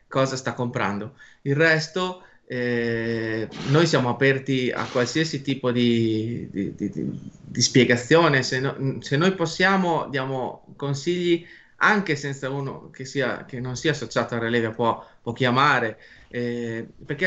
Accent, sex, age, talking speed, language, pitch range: native, male, 30-49, 145 wpm, Italian, 125-160 Hz